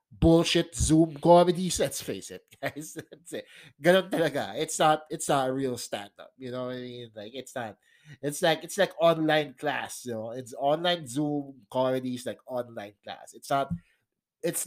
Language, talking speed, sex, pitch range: English, 170 wpm, male, 130-165 Hz